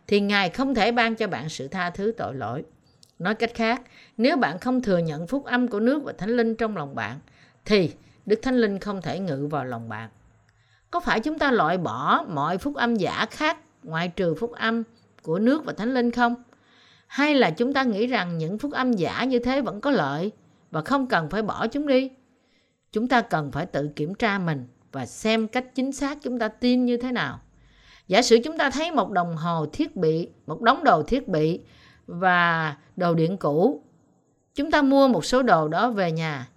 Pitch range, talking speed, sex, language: 160-245 Hz, 215 wpm, female, Vietnamese